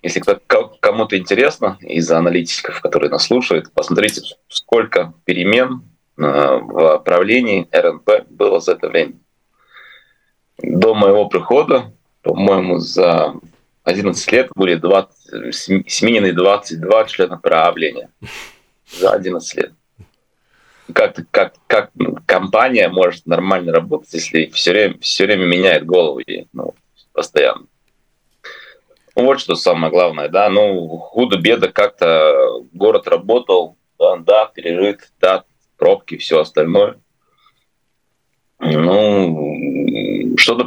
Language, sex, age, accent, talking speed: Russian, male, 30-49, native, 100 wpm